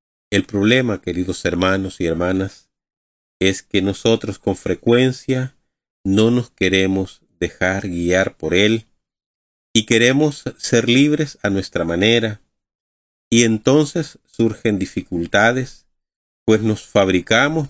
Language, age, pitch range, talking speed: Spanish, 40-59, 90-115 Hz, 110 wpm